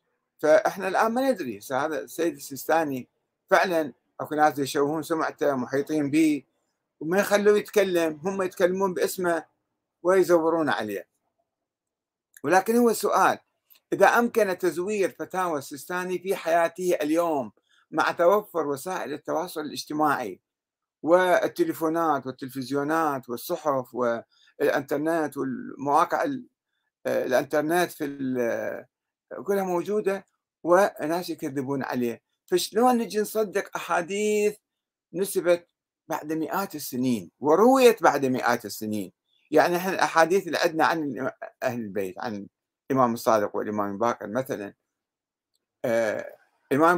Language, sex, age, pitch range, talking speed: Arabic, male, 50-69, 145-195 Hz, 100 wpm